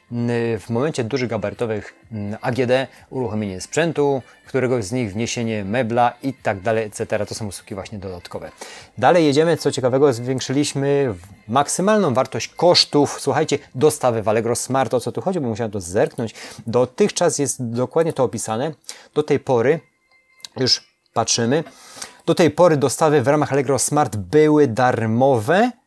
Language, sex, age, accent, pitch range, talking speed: Polish, male, 30-49, native, 115-145 Hz, 140 wpm